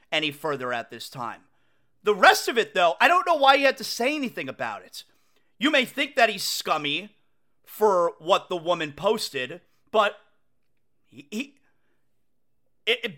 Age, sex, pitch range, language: 30-49, male, 175-280 Hz, English